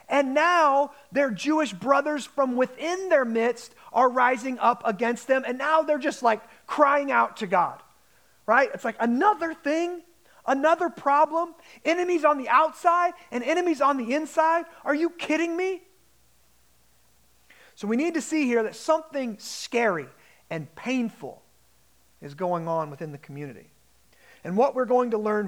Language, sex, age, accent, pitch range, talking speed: English, male, 30-49, American, 190-285 Hz, 155 wpm